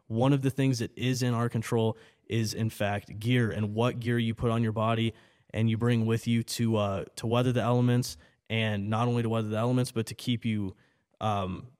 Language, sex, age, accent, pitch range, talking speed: English, male, 20-39, American, 110-120 Hz, 225 wpm